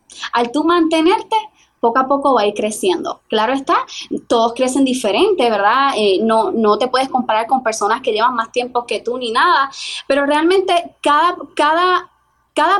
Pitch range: 255-340 Hz